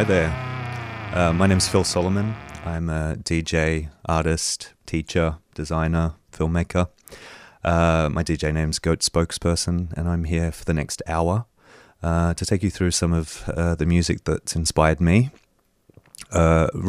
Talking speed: 155 wpm